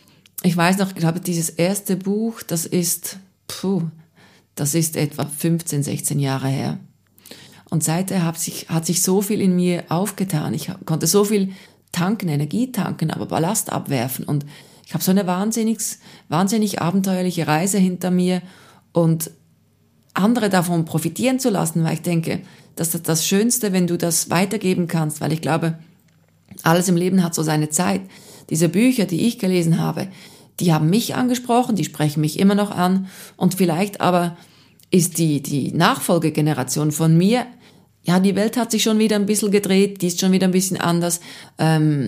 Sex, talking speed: female, 175 wpm